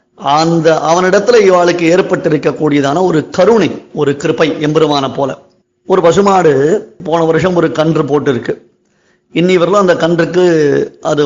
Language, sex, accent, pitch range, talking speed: Tamil, male, native, 155-190 Hz, 115 wpm